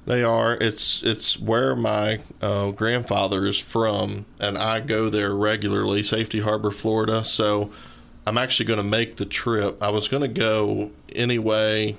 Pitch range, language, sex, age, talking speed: 105-115 Hz, English, male, 20-39, 160 wpm